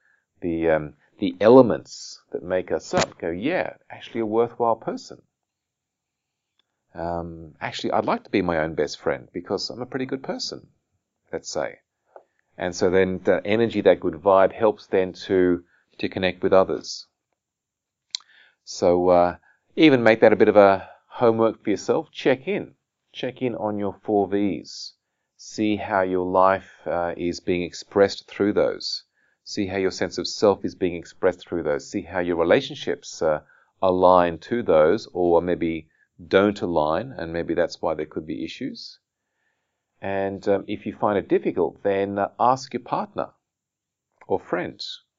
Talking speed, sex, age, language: 160 wpm, male, 40-59, English